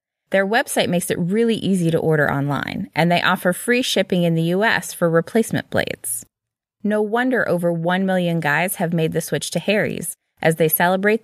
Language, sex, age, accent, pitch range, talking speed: English, female, 20-39, American, 165-220 Hz, 185 wpm